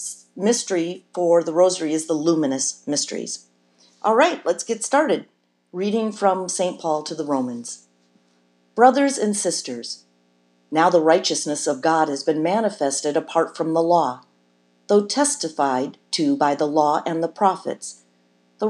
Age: 50-69